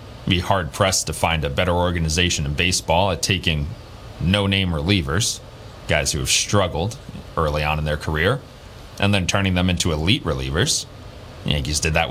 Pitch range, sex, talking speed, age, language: 85-105 Hz, male, 165 wpm, 30-49, English